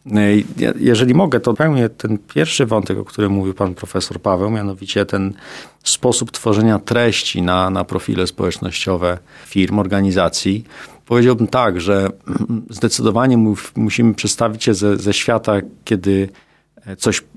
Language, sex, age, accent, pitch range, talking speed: Polish, male, 40-59, native, 95-115 Hz, 130 wpm